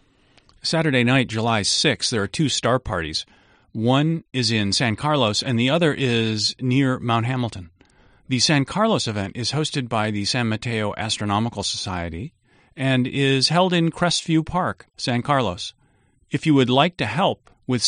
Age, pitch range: 40-59, 105-135 Hz